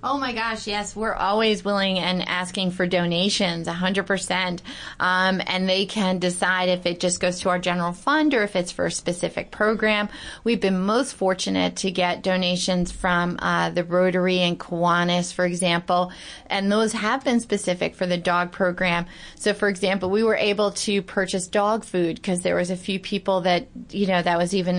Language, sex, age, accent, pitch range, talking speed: English, female, 30-49, American, 180-205 Hz, 190 wpm